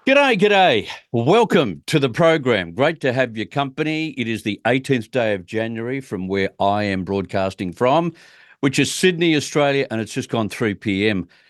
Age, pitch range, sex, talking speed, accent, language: 50-69, 100-145 Hz, male, 170 wpm, Australian, English